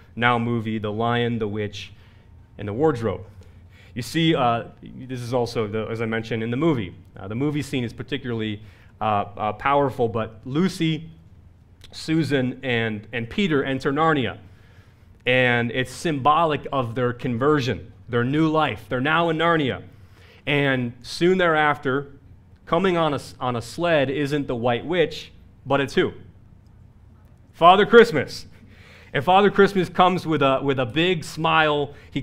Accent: American